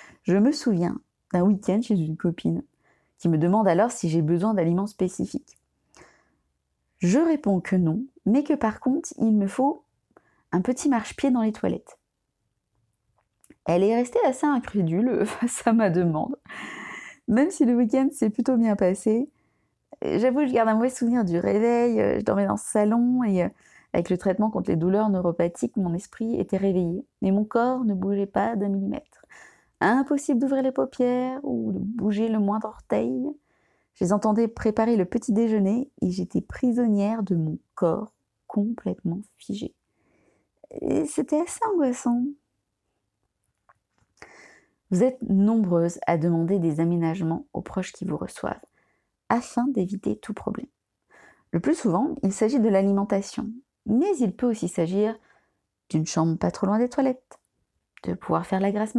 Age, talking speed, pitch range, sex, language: 30-49, 155 wpm, 185-250 Hz, female, French